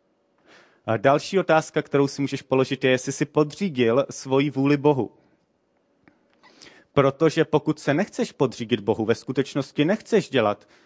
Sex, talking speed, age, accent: male, 125 wpm, 30-49, native